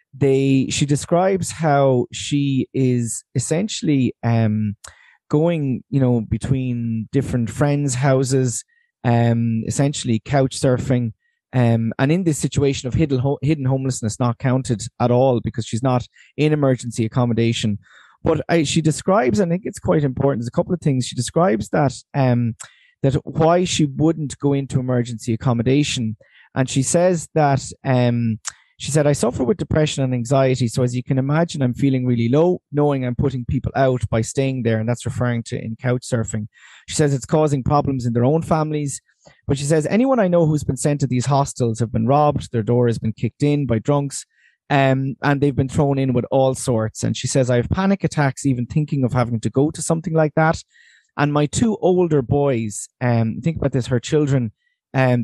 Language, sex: English, male